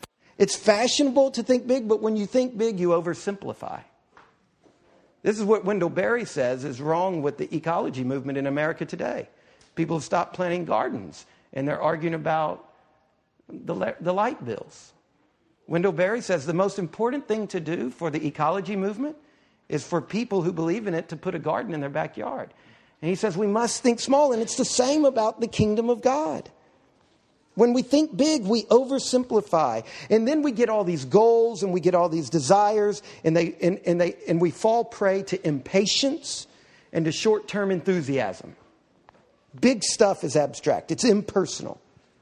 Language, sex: English, male